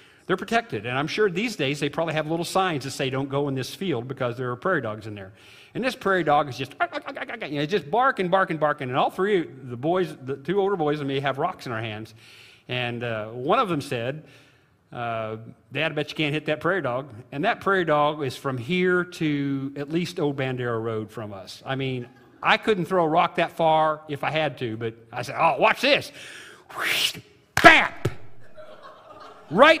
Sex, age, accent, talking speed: male, 50-69, American, 220 wpm